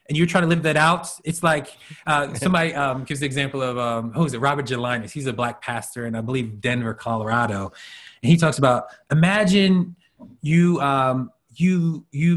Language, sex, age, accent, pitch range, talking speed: English, male, 30-49, American, 125-165 Hz, 195 wpm